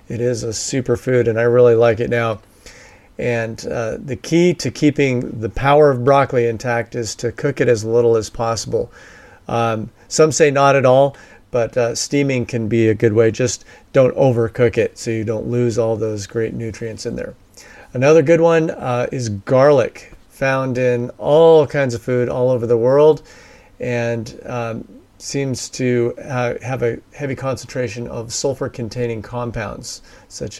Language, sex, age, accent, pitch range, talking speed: English, male, 40-59, American, 115-135 Hz, 170 wpm